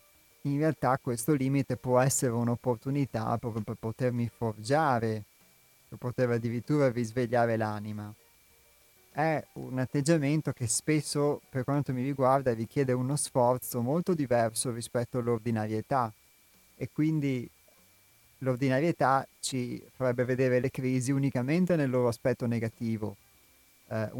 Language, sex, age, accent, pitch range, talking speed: Italian, male, 30-49, native, 115-135 Hz, 115 wpm